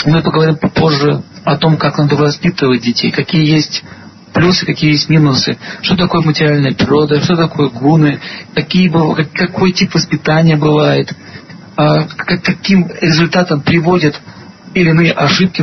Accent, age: native, 40-59